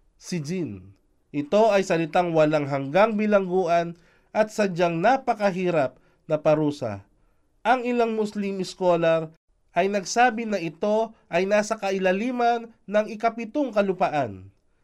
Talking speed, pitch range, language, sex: 110 wpm, 150-210 Hz, Filipino, male